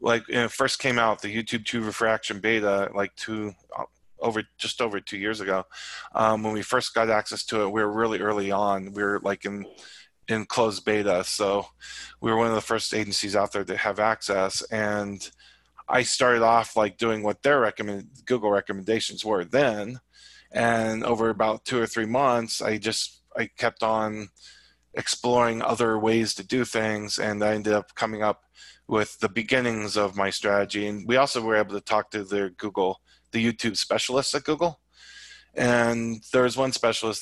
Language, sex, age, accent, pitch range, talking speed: English, male, 20-39, American, 105-120 Hz, 185 wpm